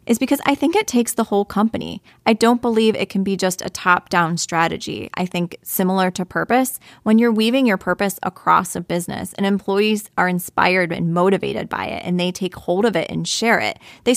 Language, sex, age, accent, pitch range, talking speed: English, female, 20-39, American, 175-205 Hz, 210 wpm